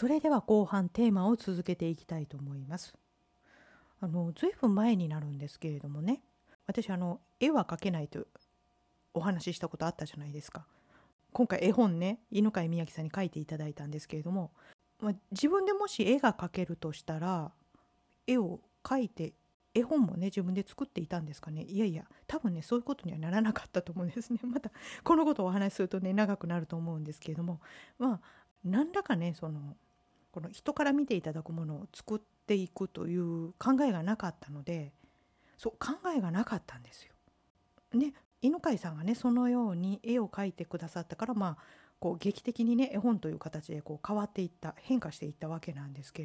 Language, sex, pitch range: Japanese, female, 165-230 Hz